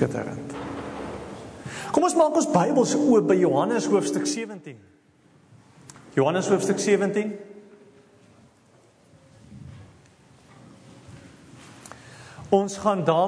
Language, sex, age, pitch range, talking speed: English, male, 40-59, 155-220 Hz, 70 wpm